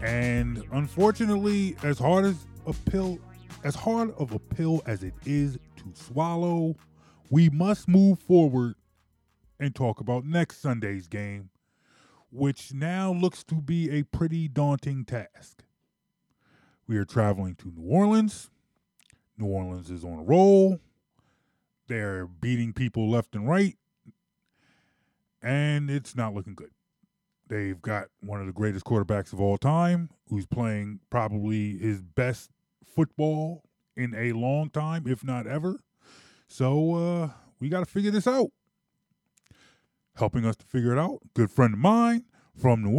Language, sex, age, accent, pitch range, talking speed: English, male, 20-39, American, 110-165 Hz, 140 wpm